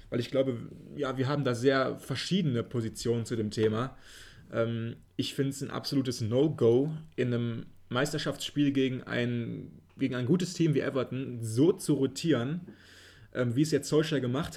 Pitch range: 120-145 Hz